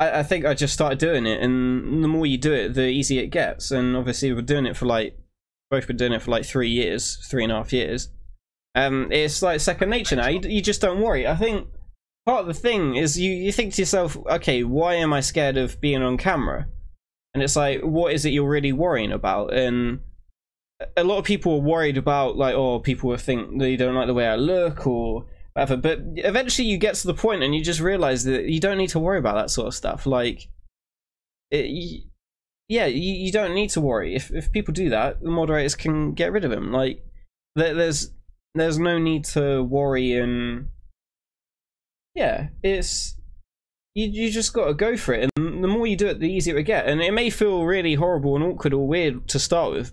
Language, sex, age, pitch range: English, male, 20-39, 130-175 Hz